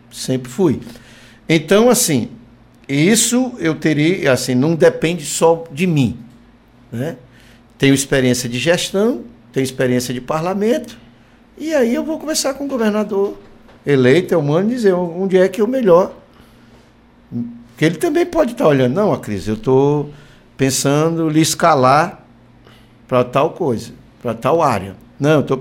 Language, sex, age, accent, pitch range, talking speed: Portuguese, male, 60-79, Brazilian, 120-185 Hz, 150 wpm